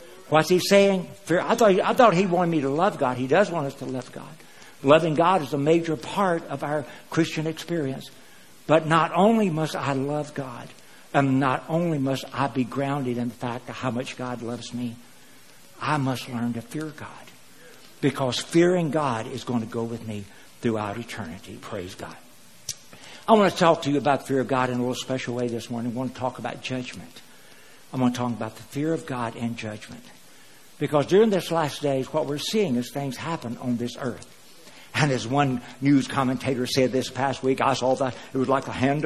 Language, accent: English, American